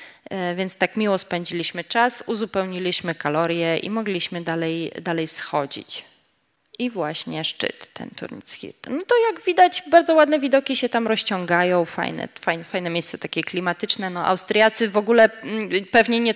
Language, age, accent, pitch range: Polish, 20-39, native, 170-215 Hz